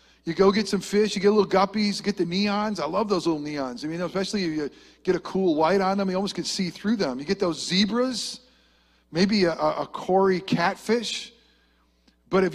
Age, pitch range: 50-69, 130-215 Hz